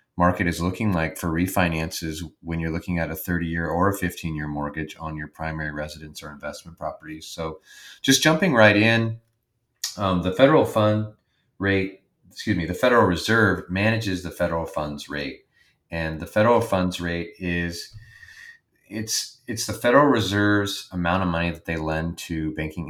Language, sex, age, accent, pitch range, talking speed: English, male, 30-49, American, 80-100 Hz, 170 wpm